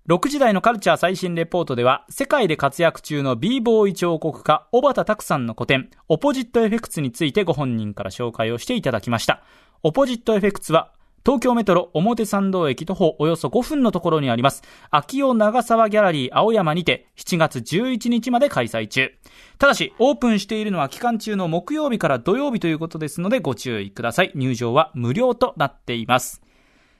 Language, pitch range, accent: Japanese, 140-225 Hz, native